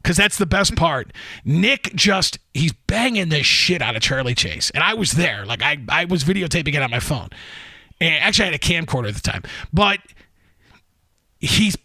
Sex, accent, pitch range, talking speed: male, American, 160-240 Hz, 190 wpm